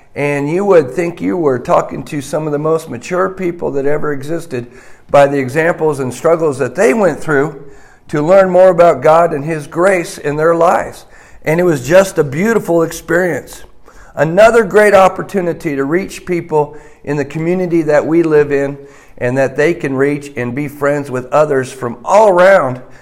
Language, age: English, 50-69